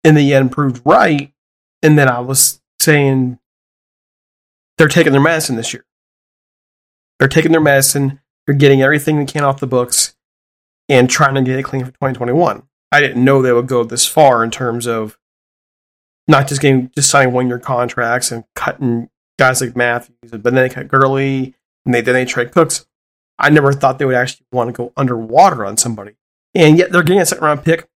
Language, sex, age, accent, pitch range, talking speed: English, male, 30-49, American, 125-145 Hz, 200 wpm